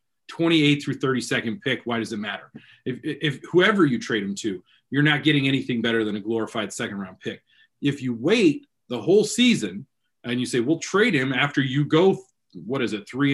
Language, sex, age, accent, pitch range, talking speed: English, male, 30-49, American, 130-175 Hz, 200 wpm